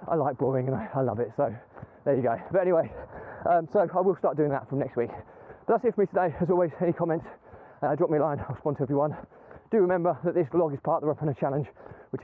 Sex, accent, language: male, British, English